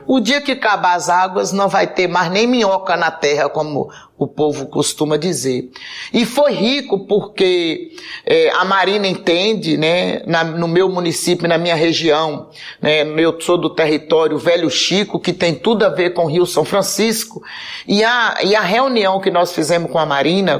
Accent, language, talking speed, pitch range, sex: Brazilian, Portuguese, 185 wpm, 170-230 Hz, male